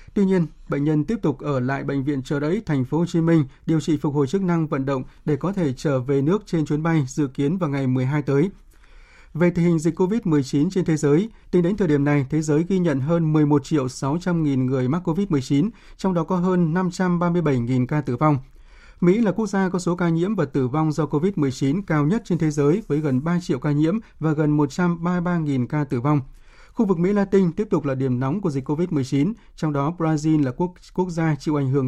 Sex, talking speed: male, 235 wpm